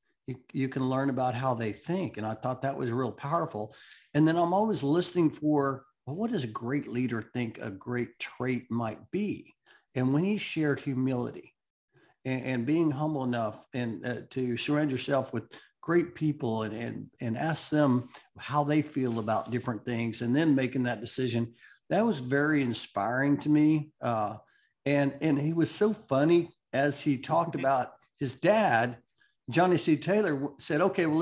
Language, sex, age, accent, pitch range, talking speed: English, male, 50-69, American, 125-155 Hz, 175 wpm